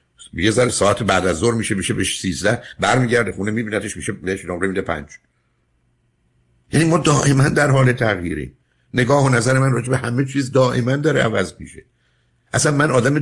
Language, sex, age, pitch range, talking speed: Persian, male, 60-79, 95-130 Hz, 175 wpm